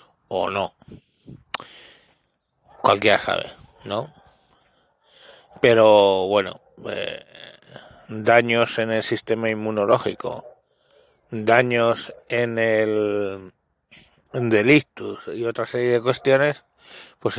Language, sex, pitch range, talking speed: Spanish, male, 105-125 Hz, 80 wpm